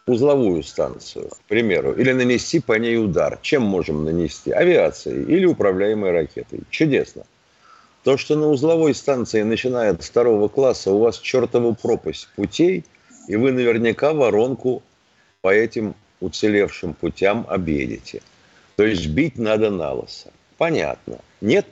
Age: 50-69